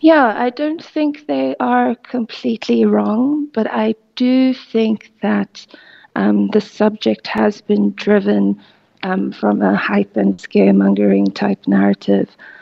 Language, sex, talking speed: English, female, 130 wpm